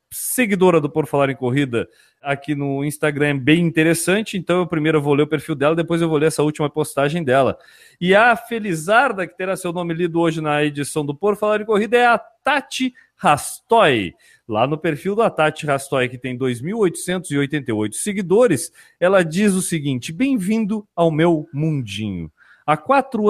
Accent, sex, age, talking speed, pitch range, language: Brazilian, male, 40-59, 175 wpm, 145-205 Hz, Portuguese